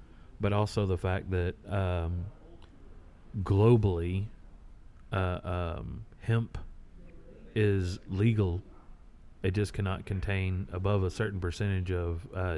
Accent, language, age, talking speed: American, English, 40-59, 105 wpm